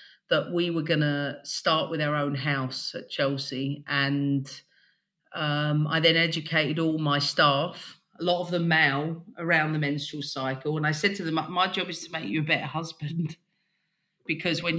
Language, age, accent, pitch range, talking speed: English, 40-59, British, 145-175 Hz, 185 wpm